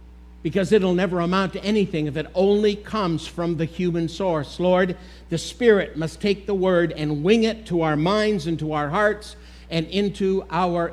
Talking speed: 185 wpm